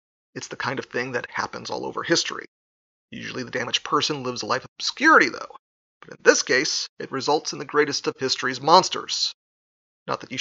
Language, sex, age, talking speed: English, male, 30-49, 200 wpm